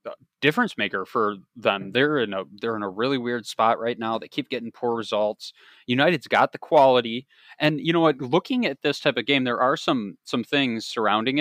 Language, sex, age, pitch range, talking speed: English, male, 20-39, 115-140 Hz, 210 wpm